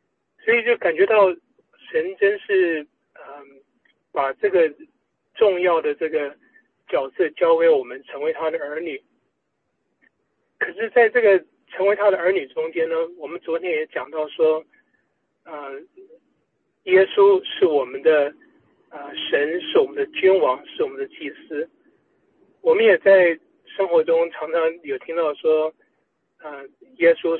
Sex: male